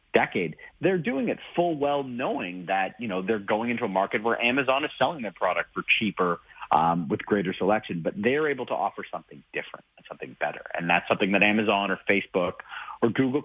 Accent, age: American, 30-49